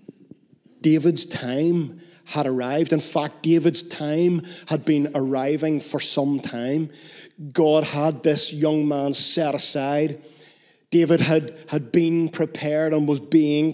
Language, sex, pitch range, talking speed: English, male, 145-175 Hz, 125 wpm